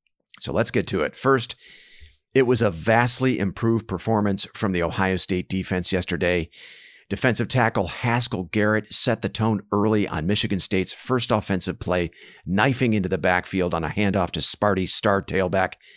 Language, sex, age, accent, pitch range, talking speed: English, male, 50-69, American, 95-115 Hz, 160 wpm